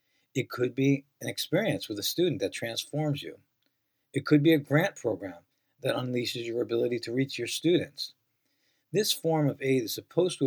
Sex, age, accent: male, 50-69, American